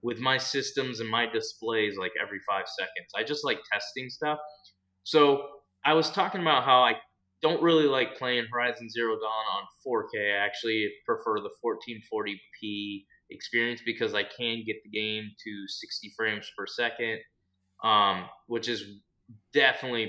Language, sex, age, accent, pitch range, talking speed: English, male, 20-39, American, 105-145 Hz, 155 wpm